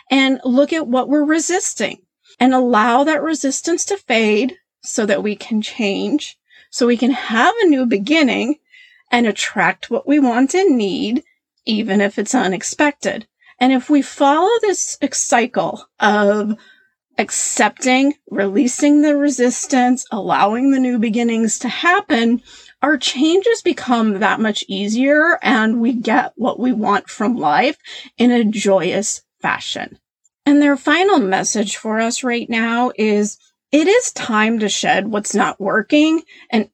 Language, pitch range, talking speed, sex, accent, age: English, 215-290 Hz, 145 wpm, female, American, 40-59